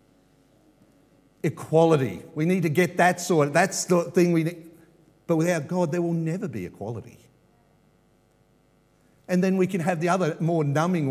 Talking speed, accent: 175 wpm, Australian